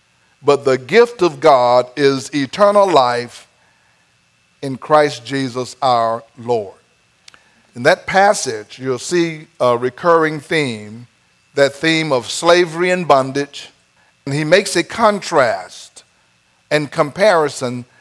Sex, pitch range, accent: male, 130-175 Hz, American